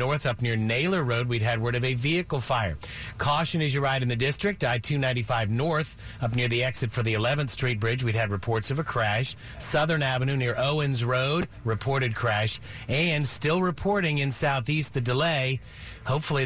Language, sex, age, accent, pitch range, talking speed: English, male, 40-59, American, 120-150 Hz, 190 wpm